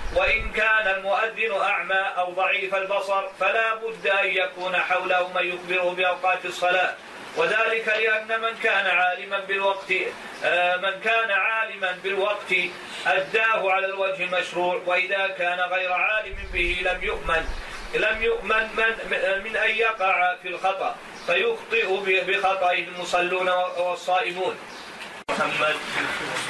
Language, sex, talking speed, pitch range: Arabic, male, 115 wpm, 170-195 Hz